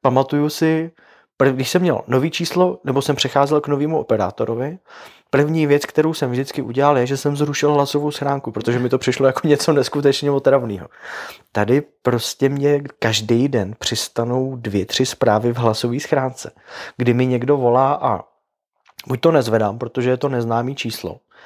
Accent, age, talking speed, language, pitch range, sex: native, 20-39, 160 wpm, Czech, 120-145 Hz, male